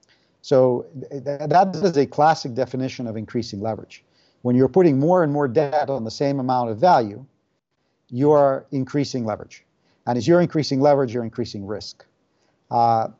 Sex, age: male, 50-69